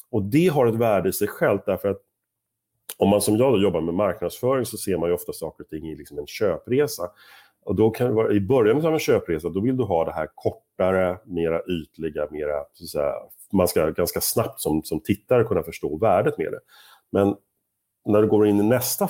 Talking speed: 225 wpm